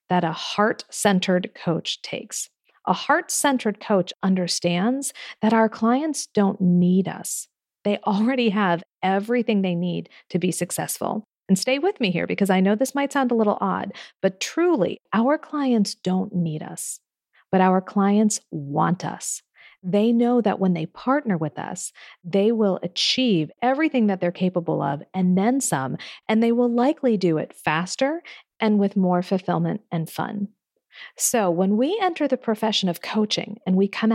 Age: 40-59